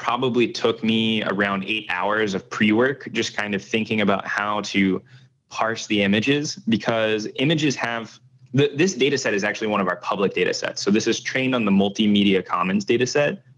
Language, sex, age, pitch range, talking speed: English, male, 20-39, 100-130 Hz, 190 wpm